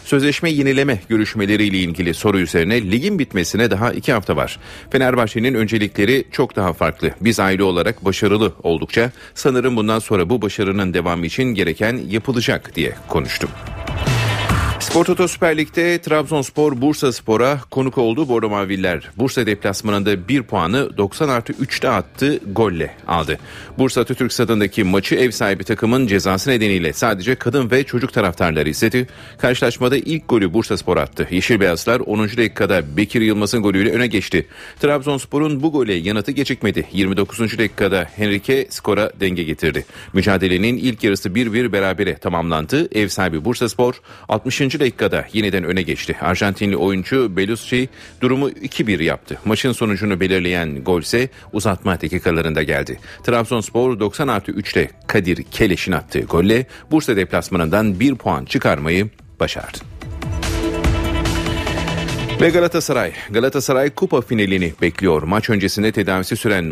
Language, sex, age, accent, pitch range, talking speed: Turkish, male, 40-59, native, 95-125 Hz, 125 wpm